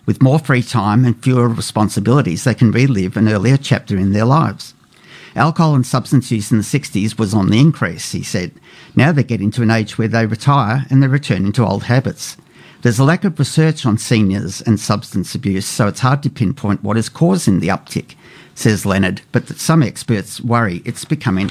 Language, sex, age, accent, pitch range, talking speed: English, male, 50-69, Australian, 105-140 Hz, 205 wpm